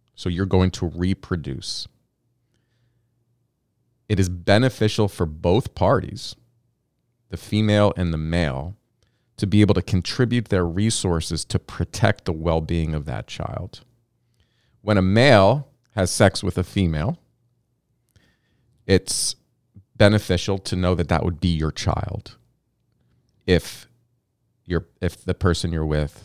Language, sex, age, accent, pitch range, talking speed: English, male, 30-49, American, 85-115 Hz, 125 wpm